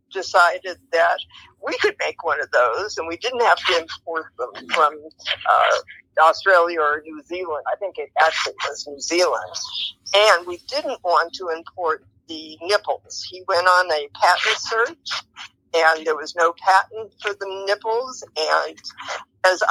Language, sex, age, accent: English, female, 50-69, American